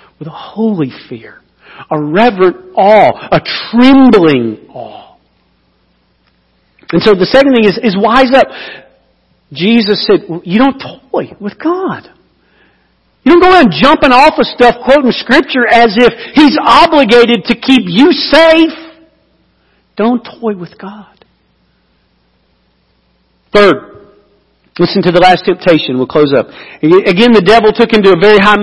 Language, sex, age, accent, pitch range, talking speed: English, male, 50-69, American, 180-275 Hz, 140 wpm